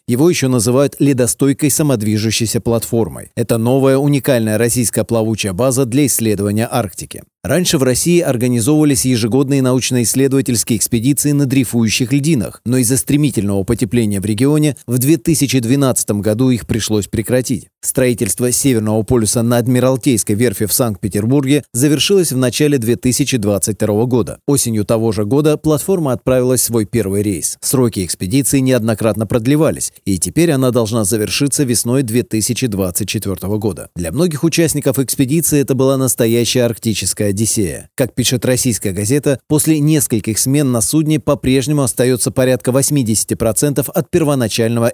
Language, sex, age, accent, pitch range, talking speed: Russian, male, 30-49, native, 115-140 Hz, 130 wpm